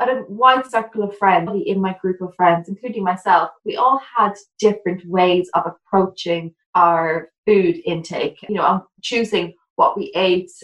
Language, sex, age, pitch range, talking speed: English, female, 20-39, 170-220 Hz, 160 wpm